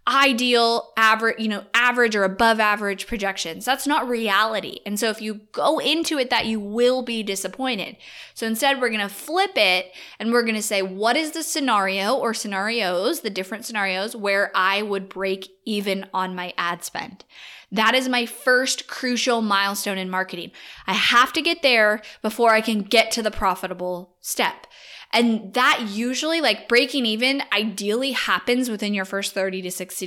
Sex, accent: female, American